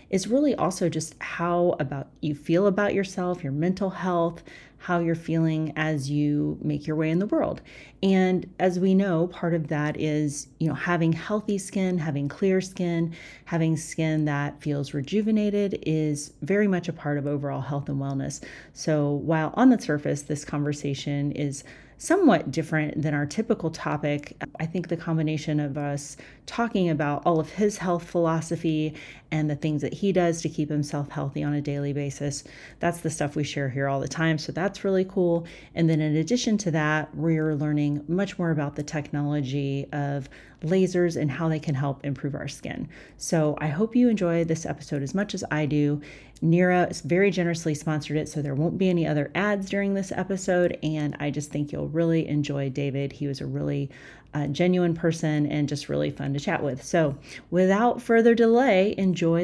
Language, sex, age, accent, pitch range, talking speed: English, female, 30-49, American, 145-180 Hz, 190 wpm